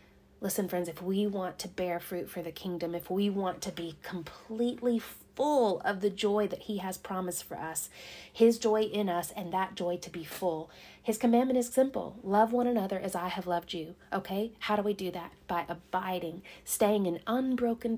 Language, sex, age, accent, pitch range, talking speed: English, female, 30-49, American, 175-205 Hz, 200 wpm